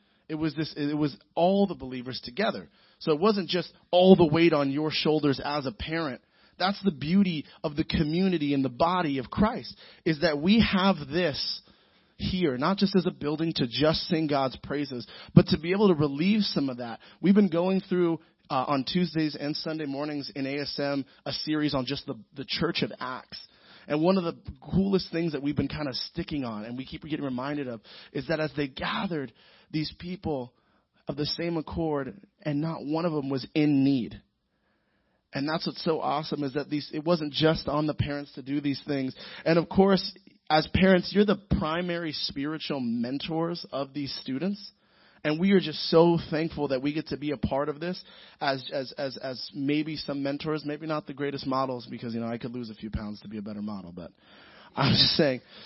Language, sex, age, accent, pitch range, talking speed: English, male, 30-49, American, 140-175 Hz, 210 wpm